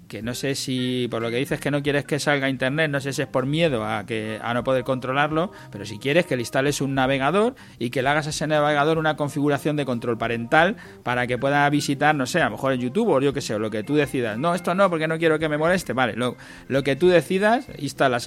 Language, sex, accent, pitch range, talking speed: Spanish, male, Spanish, 125-160 Hz, 270 wpm